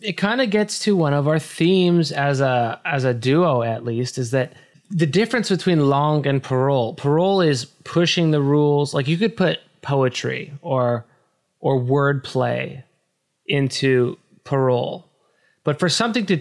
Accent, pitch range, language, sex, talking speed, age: American, 130-165 Hz, English, male, 155 wpm, 20-39